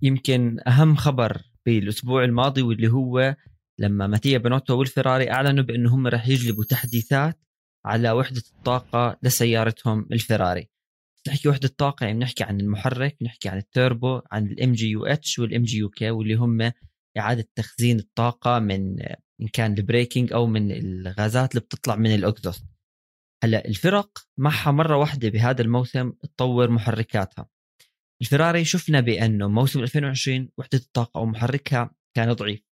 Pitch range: 110-135 Hz